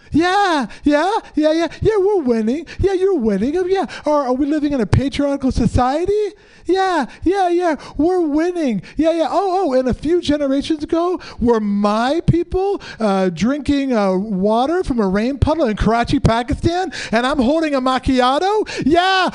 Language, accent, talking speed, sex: English, American, 165 wpm, male